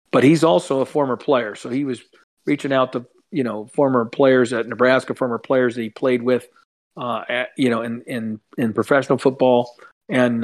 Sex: male